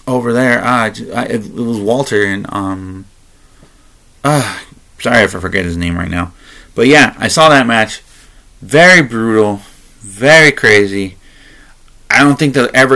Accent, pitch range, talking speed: American, 95-120 Hz, 155 wpm